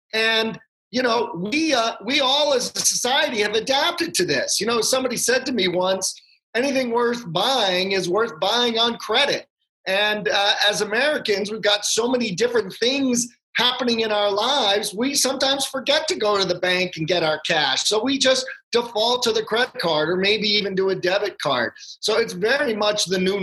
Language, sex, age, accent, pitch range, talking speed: English, male, 40-59, American, 195-250 Hz, 195 wpm